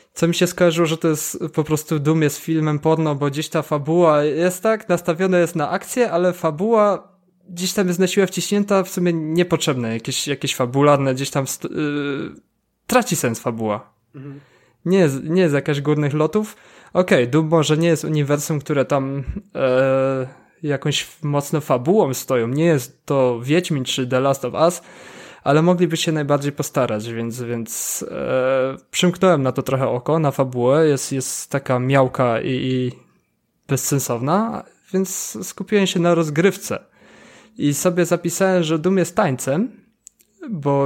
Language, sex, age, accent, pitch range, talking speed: Polish, male, 20-39, native, 140-180 Hz, 155 wpm